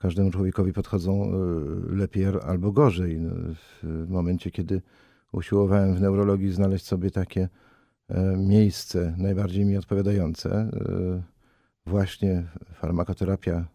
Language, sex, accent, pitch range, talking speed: Polish, male, native, 90-105 Hz, 90 wpm